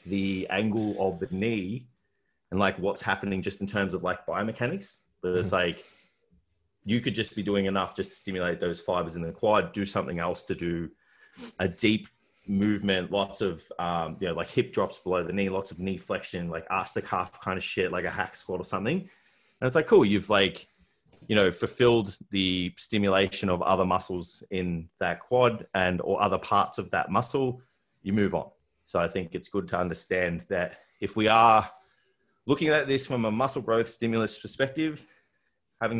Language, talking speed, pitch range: English, 195 wpm, 90-115 Hz